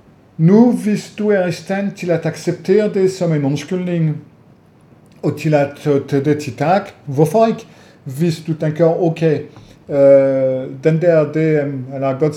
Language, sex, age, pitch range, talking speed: Danish, male, 50-69, 135-165 Hz, 80 wpm